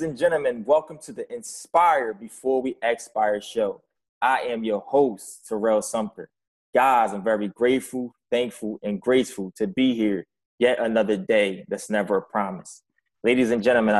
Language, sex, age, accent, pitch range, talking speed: English, male, 20-39, American, 105-120 Hz, 160 wpm